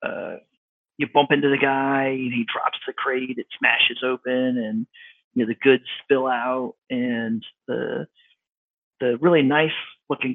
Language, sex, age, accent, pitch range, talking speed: English, male, 40-59, American, 120-160 Hz, 155 wpm